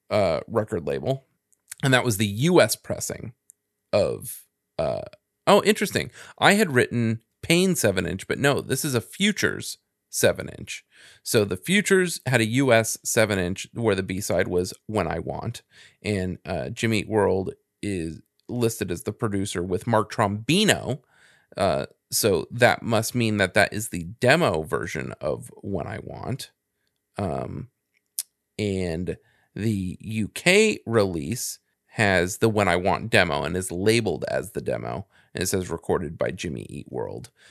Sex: male